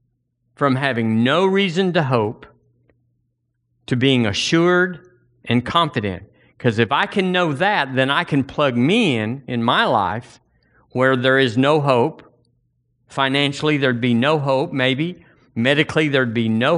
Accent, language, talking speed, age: American, English, 145 wpm, 50-69